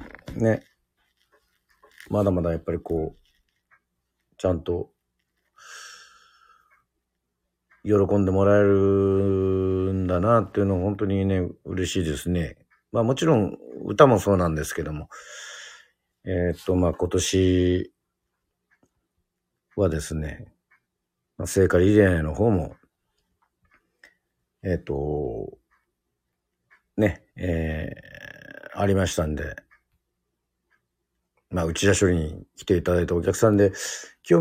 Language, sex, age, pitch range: Japanese, male, 50-69, 80-100 Hz